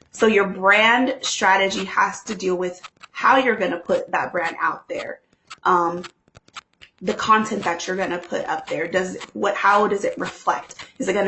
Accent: American